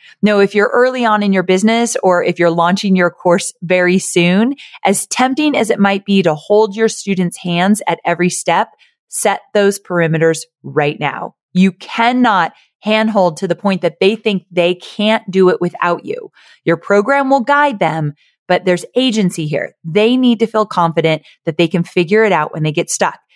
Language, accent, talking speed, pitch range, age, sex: English, American, 190 wpm, 175-230 Hz, 30-49, female